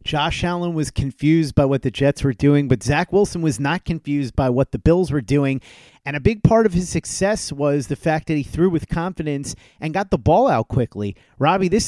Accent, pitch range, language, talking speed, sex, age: American, 125-155 Hz, English, 225 wpm, male, 40-59